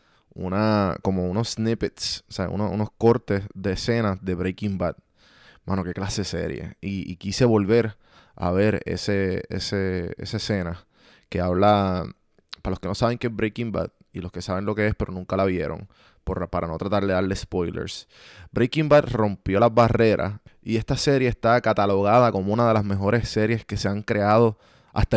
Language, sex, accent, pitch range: Spanish, male, Venezuelan, 95-115 Hz